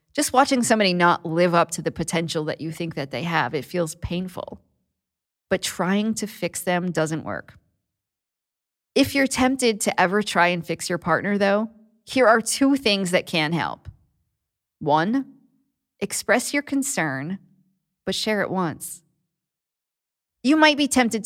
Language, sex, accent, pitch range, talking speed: English, female, American, 160-205 Hz, 155 wpm